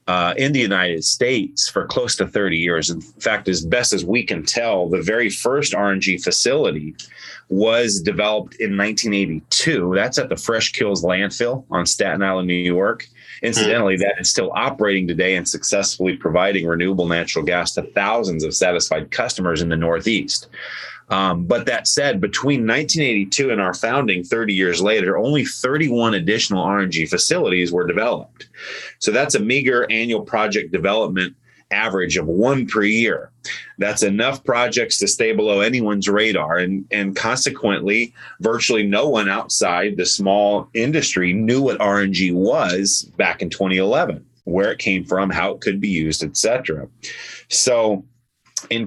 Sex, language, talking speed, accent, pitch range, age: male, English, 155 wpm, American, 90-110 Hz, 30-49